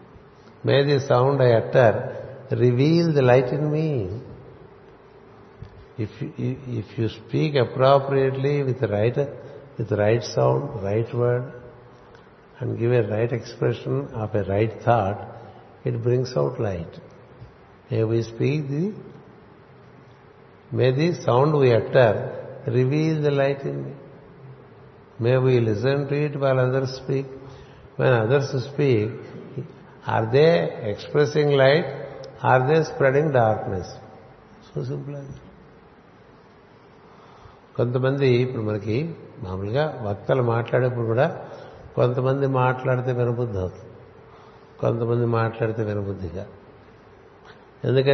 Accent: native